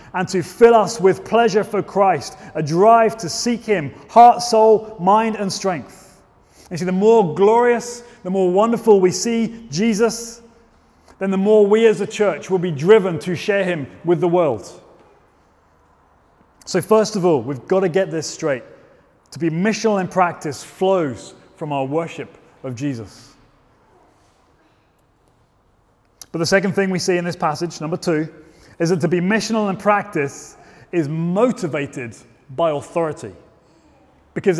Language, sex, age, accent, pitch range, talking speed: English, male, 30-49, British, 155-210 Hz, 155 wpm